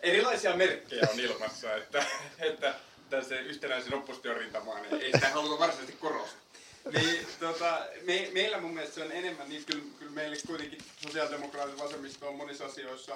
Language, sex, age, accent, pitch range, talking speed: Finnish, male, 30-49, native, 115-150 Hz, 160 wpm